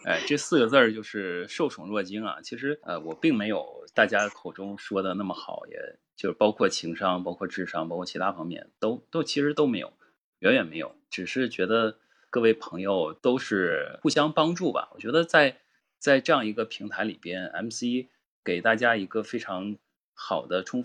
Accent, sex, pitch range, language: native, male, 95-130 Hz, Chinese